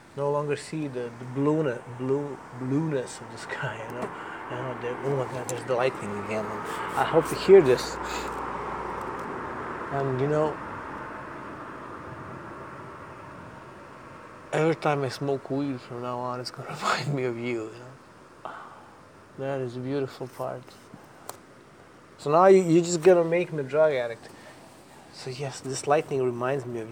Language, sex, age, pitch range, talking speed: English, male, 30-49, 125-155 Hz, 145 wpm